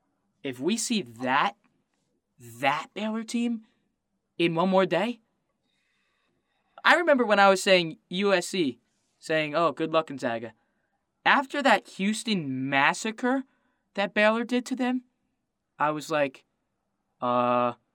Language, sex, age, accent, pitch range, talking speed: English, male, 20-39, American, 155-235 Hz, 120 wpm